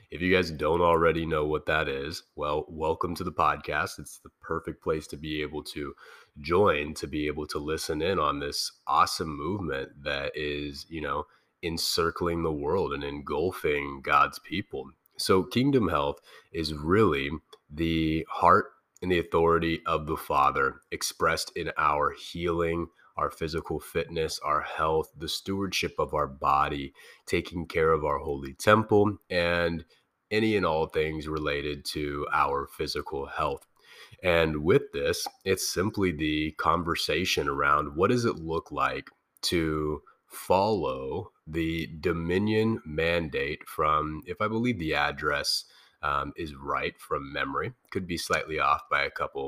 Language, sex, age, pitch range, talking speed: English, male, 30-49, 75-90 Hz, 150 wpm